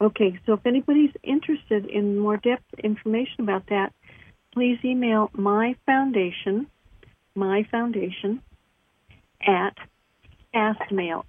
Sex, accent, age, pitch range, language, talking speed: female, American, 60-79, 200-230 Hz, English, 100 wpm